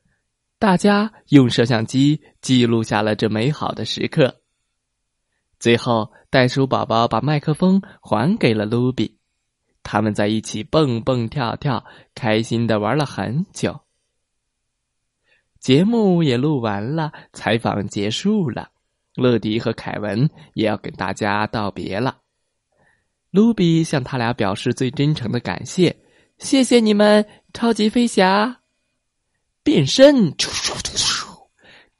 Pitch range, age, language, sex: 110-180 Hz, 20-39, Chinese, male